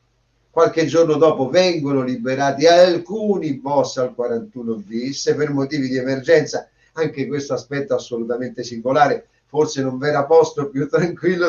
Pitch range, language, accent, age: 140-185 Hz, Italian, native, 50-69